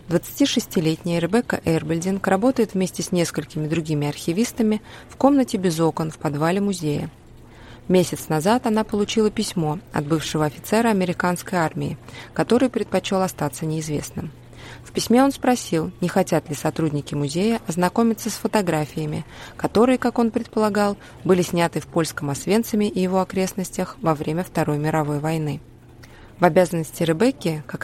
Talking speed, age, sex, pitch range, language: 135 wpm, 20-39, female, 150-200 Hz, Russian